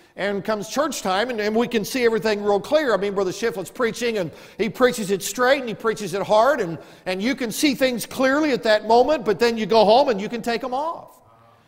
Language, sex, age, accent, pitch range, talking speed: English, male, 50-69, American, 180-230 Hz, 245 wpm